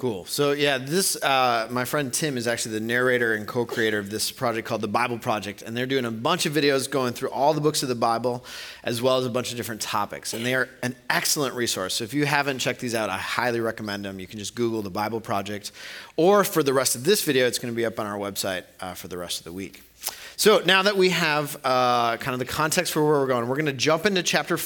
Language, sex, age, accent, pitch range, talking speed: English, male, 30-49, American, 110-150 Hz, 265 wpm